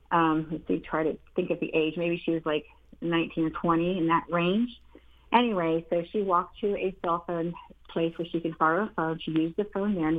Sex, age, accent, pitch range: female, 40-59, American, 160-205 Hz